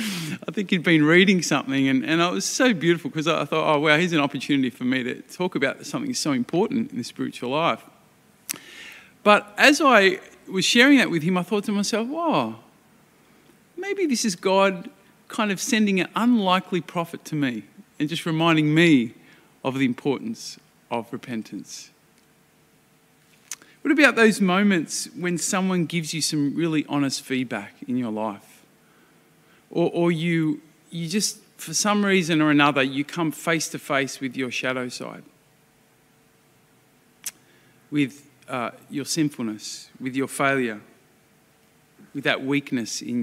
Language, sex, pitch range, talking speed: English, male, 145-200 Hz, 155 wpm